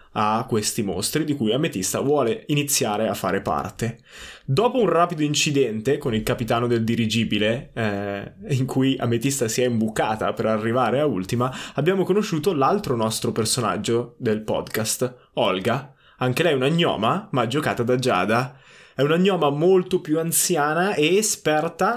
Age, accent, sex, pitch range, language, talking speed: 20-39, native, male, 115-150 Hz, Italian, 155 wpm